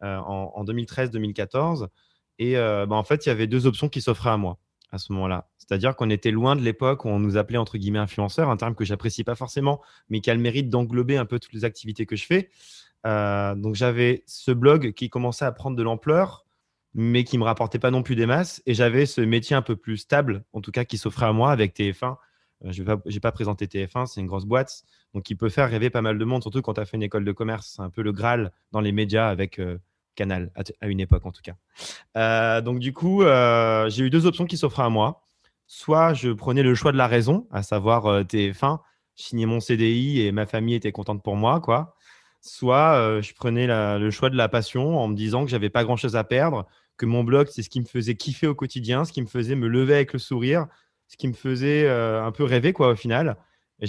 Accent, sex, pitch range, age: French, male, 105-130 Hz, 20-39